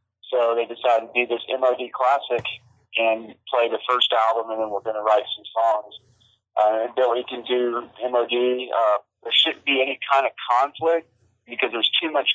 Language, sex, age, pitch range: English, male, 40-59, 115-130 Hz